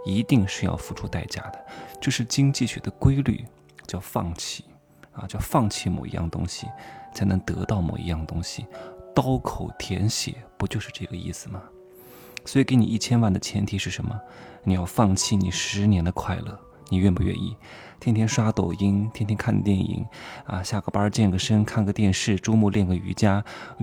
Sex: male